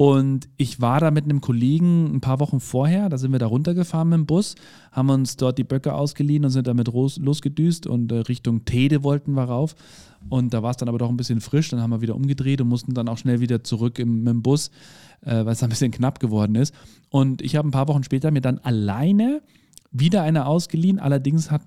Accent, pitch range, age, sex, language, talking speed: German, 120-150 Hz, 40-59, male, German, 230 wpm